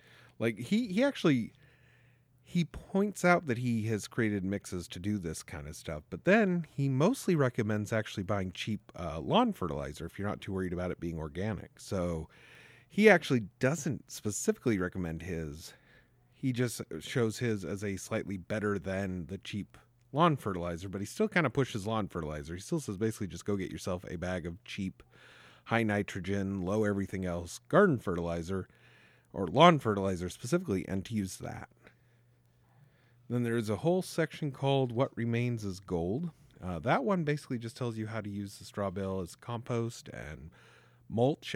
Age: 40-59